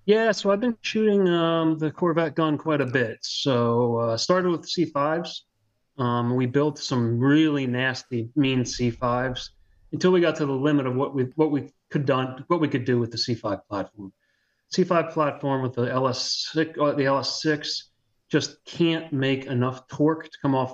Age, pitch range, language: 30-49, 120-150 Hz, English